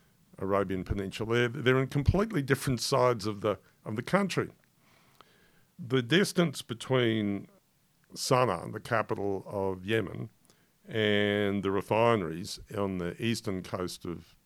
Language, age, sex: English, 50-69, male